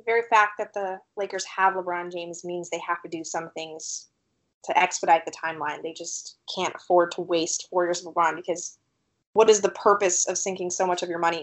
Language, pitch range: English, 170-185 Hz